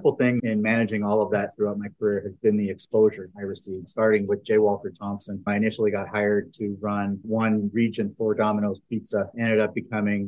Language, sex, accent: English, male, American